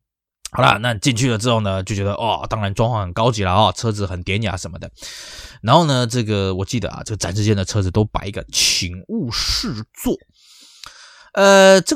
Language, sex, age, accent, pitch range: Chinese, male, 20-39, native, 100-145 Hz